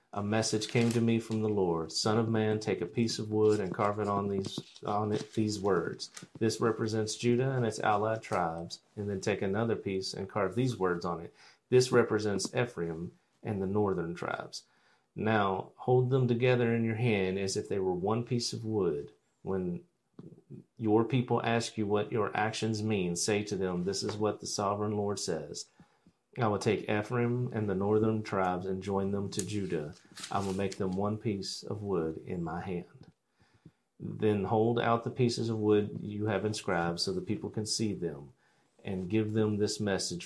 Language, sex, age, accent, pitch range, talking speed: English, male, 40-59, American, 95-110 Hz, 190 wpm